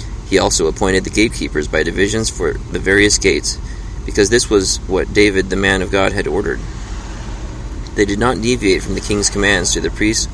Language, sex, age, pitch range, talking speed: English, male, 30-49, 95-110 Hz, 190 wpm